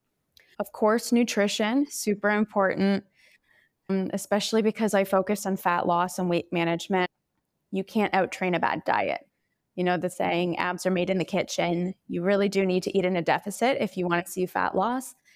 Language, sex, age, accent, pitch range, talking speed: English, female, 20-39, American, 175-205 Hz, 185 wpm